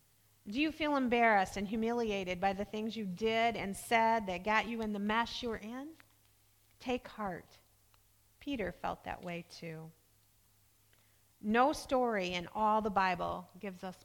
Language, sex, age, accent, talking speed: English, female, 40-59, American, 160 wpm